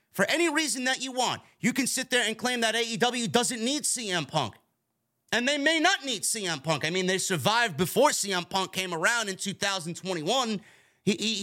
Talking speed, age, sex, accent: 190 wpm, 30-49, male, American